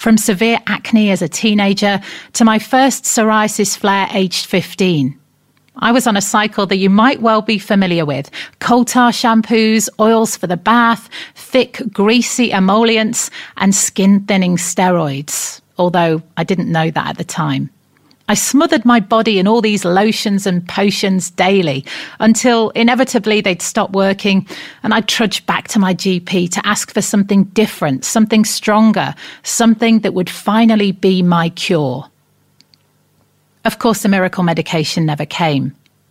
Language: English